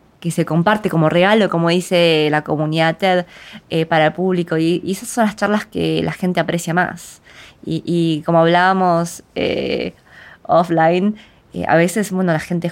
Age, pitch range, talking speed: 20-39, 160-185 Hz, 175 wpm